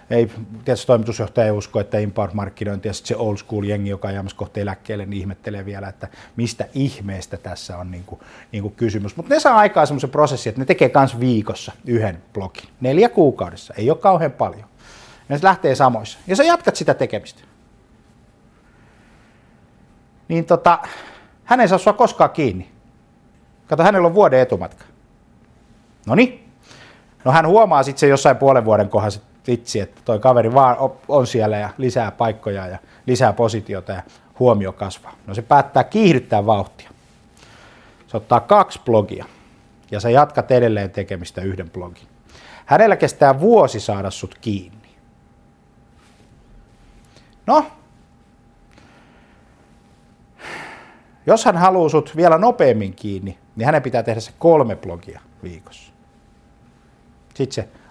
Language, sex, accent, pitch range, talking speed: Finnish, male, native, 100-135 Hz, 140 wpm